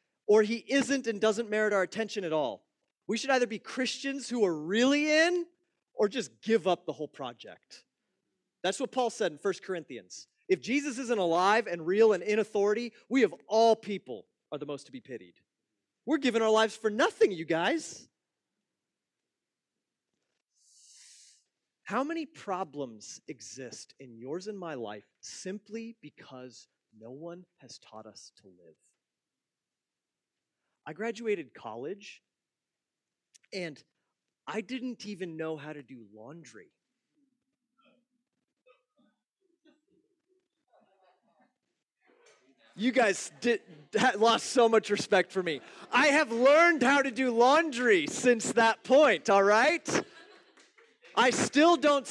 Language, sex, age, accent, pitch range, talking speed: English, male, 30-49, American, 190-275 Hz, 130 wpm